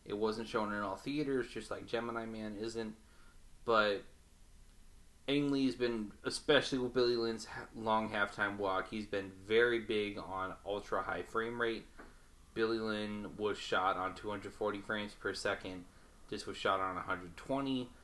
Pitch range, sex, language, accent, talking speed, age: 95-115 Hz, male, English, American, 145 wpm, 20-39